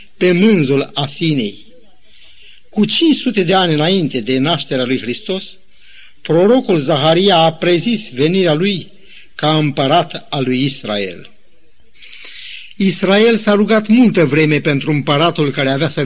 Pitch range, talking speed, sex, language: 150-195 Hz, 125 wpm, male, Romanian